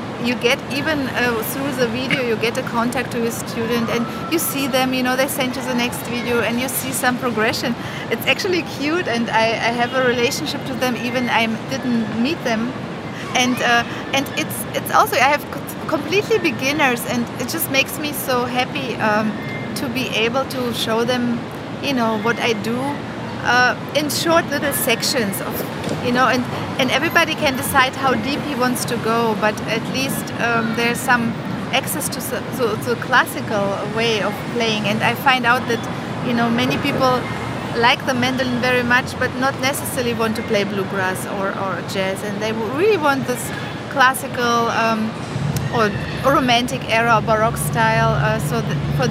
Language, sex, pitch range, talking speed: French, female, 225-255 Hz, 180 wpm